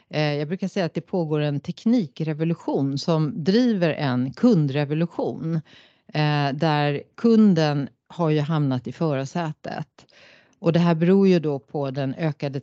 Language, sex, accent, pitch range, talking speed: Swedish, female, native, 135-175 Hz, 135 wpm